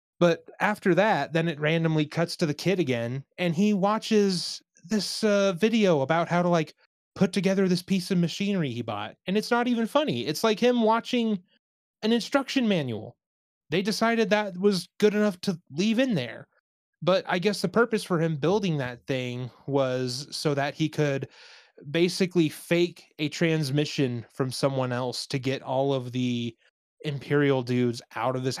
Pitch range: 135-195 Hz